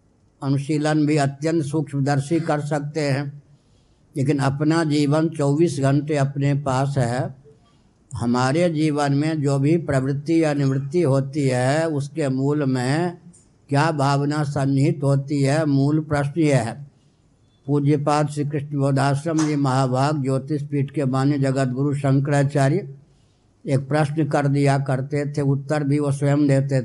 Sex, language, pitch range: male, Hindi, 135-150 Hz